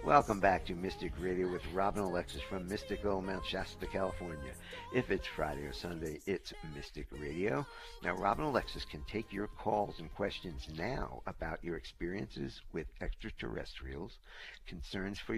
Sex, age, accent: male, 60-79, American